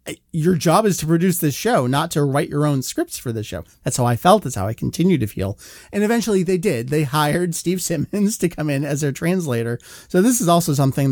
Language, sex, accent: English, male, American